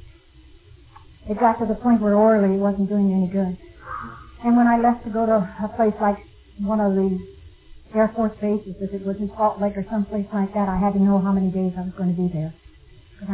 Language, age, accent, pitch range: English, 60-79, American, 185-230 Hz